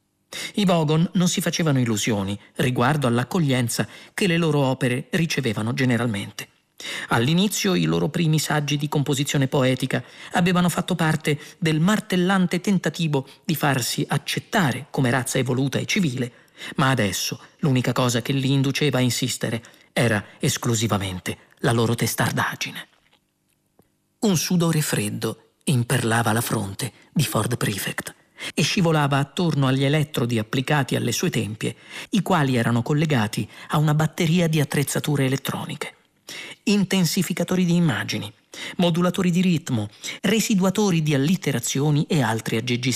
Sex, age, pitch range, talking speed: male, 40-59, 125-180 Hz, 125 wpm